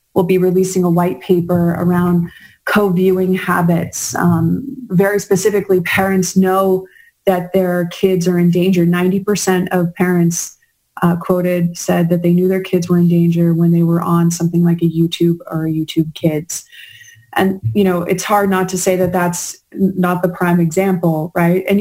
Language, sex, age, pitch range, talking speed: English, female, 20-39, 170-190 Hz, 170 wpm